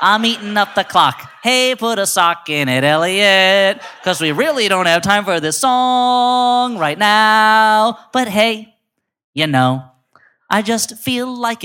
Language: English